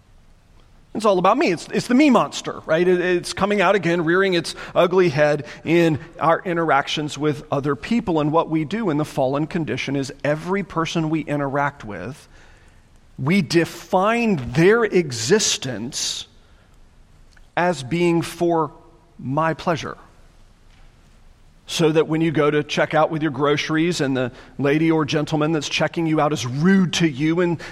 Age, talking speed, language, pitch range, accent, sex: 40-59, 160 wpm, English, 150-235 Hz, American, male